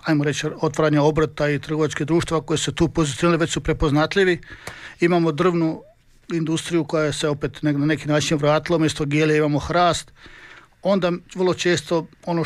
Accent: native